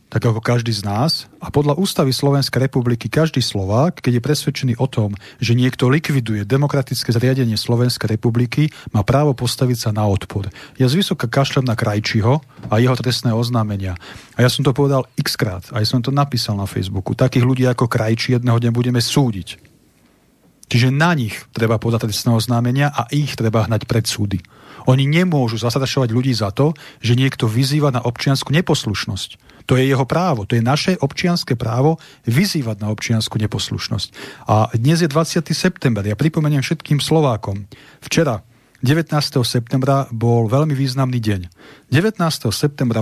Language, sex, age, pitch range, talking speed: Slovak, male, 40-59, 115-140 Hz, 165 wpm